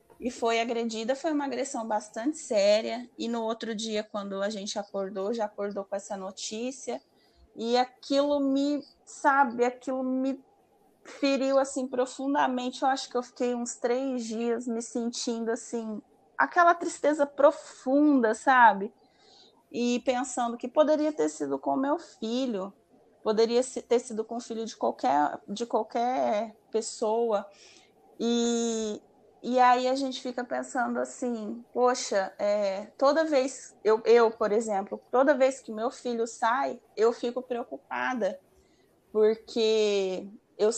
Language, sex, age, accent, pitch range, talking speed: Portuguese, female, 20-39, Brazilian, 210-260 Hz, 135 wpm